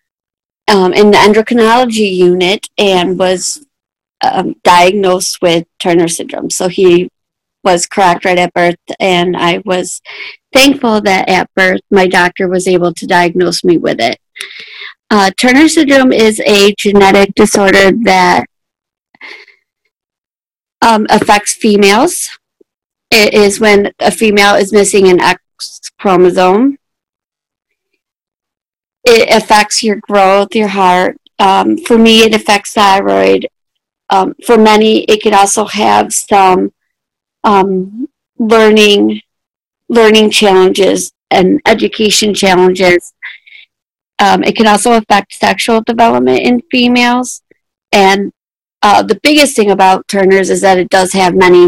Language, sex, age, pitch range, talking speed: English, female, 40-59, 185-220 Hz, 120 wpm